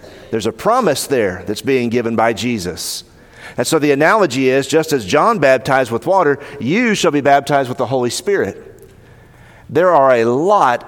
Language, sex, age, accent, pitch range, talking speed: English, male, 40-59, American, 120-165 Hz, 175 wpm